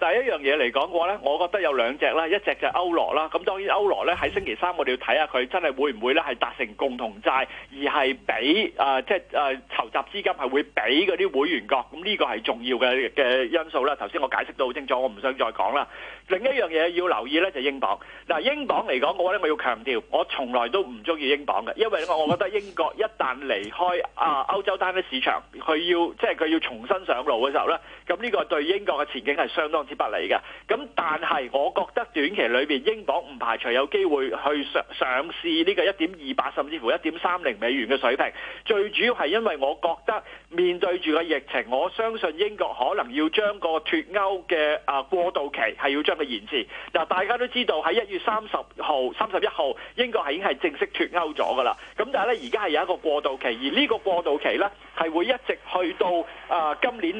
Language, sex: Chinese, male